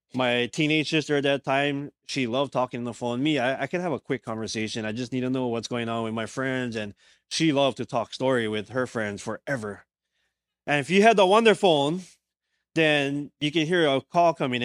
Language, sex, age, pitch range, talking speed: English, male, 20-39, 125-155 Hz, 225 wpm